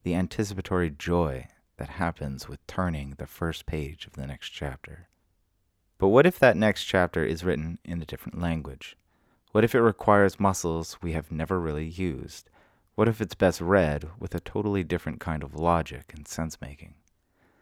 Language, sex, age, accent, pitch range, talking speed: English, male, 30-49, American, 75-95 Hz, 170 wpm